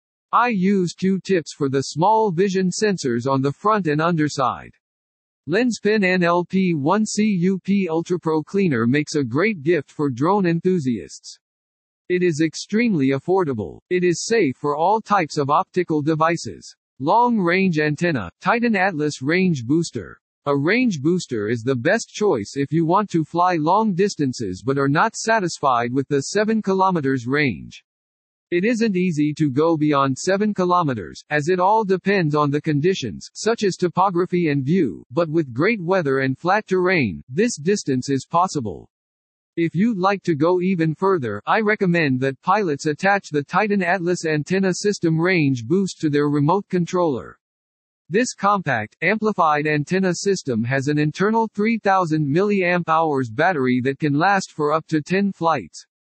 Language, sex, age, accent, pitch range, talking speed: English, male, 50-69, American, 140-190 Hz, 150 wpm